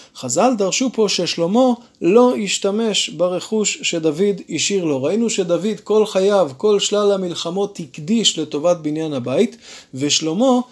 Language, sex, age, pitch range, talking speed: Hebrew, male, 20-39, 160-210 Hz, 125 wpm